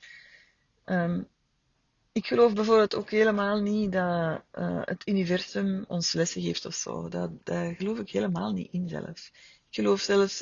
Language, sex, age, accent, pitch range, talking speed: Dutch, female, 30-49, Dutch, 170-195 Hz, 150 wpm